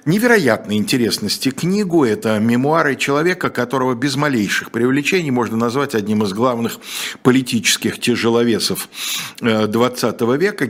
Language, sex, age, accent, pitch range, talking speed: Russian, male, 50-69, native, 105-140 Hz, 105 wpm